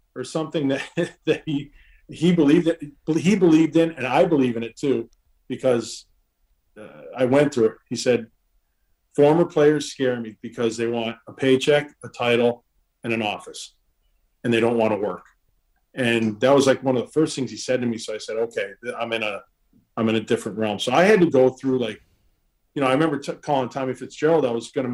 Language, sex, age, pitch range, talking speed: English, male, 40-59, 115-160 Hz, 215 wpm